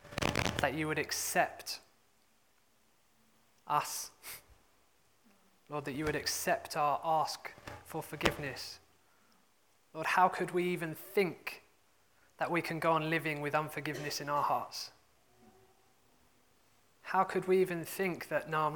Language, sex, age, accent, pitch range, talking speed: English, male, 20-39, British, 155-175 Hz, 125 wpm